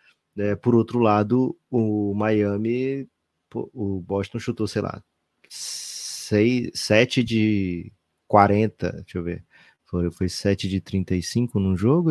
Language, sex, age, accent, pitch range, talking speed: Portuguese, male, 20-39, Brazilian, 100-120 Hz, 125 wpm